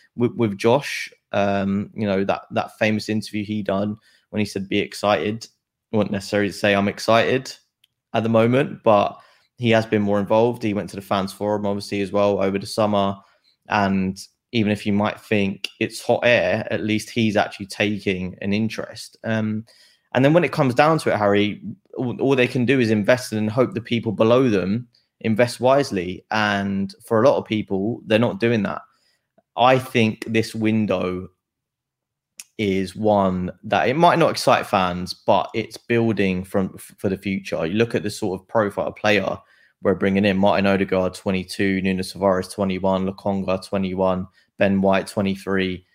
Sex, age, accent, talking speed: male, 20-39, British, 175 wpm